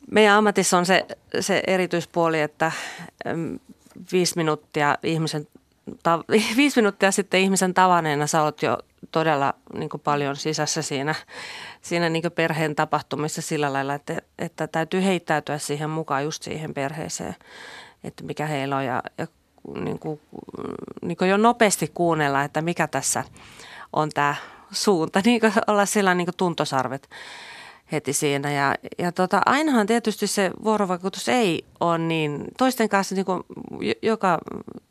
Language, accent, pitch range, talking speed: Finnish, native, 150-195 Hz, 130 wpm